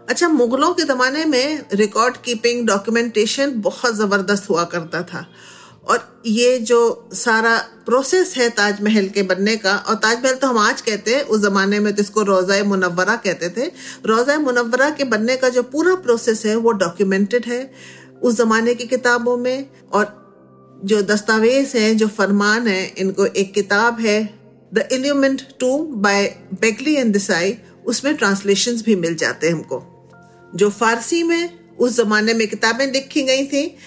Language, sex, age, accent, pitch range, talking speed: Hindi, female, 50-69, native, 200-245 Hz, 160 wpm